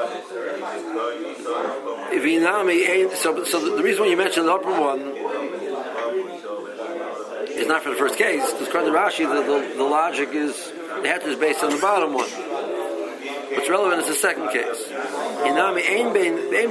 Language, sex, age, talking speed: English, male, 50-69, 145 wpm